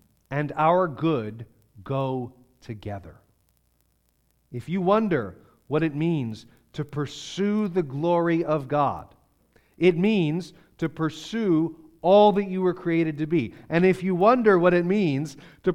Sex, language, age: male, English, 40-59